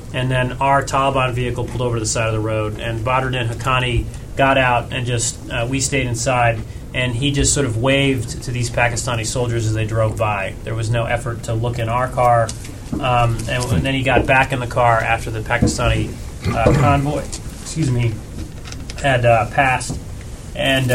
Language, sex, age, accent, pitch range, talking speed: English, male, 30-49, American, 115-130 Hz, 195 wpm